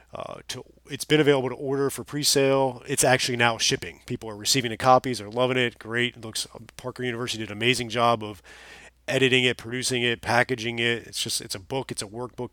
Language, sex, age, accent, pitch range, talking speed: English, male, 30-49, American, 110-130 Hz, 215 wpm